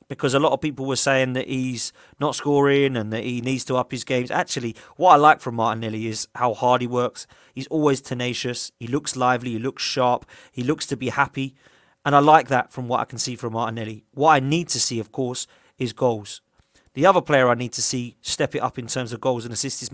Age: 30-49